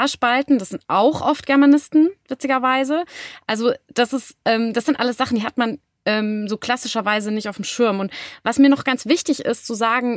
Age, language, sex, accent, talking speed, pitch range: 30-49, German, female, German, 200 wpm, 200-265 Hz